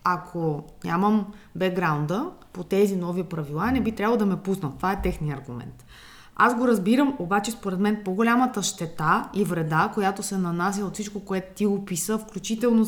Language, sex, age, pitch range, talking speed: Bulgarian, female, 20-39, 165-210 Hz, 170 wpm